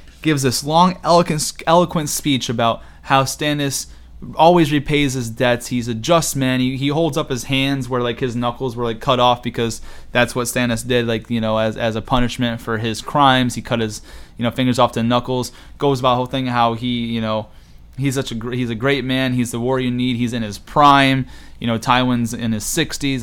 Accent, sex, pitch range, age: American, male, 120-155 Hz, 20-39